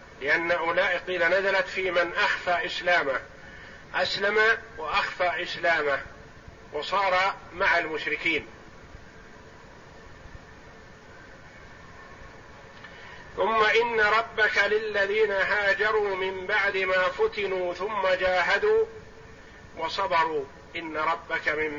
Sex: male